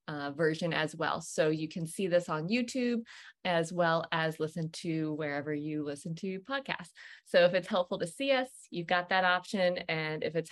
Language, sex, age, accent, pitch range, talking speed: English, female, 20-39, American, 165-200 Hz, 200 wpm